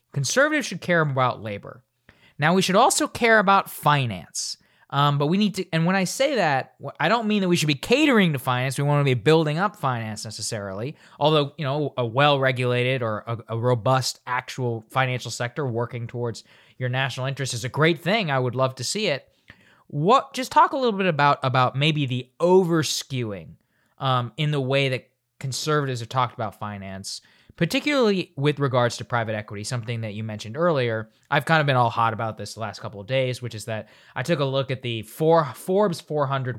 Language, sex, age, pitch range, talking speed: English, male, 20-39, 120-155 Hz, 205 wpm